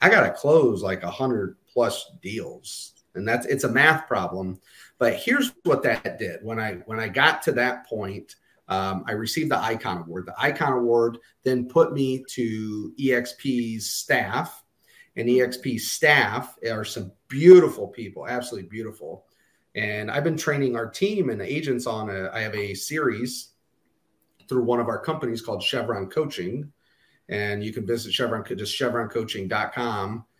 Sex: male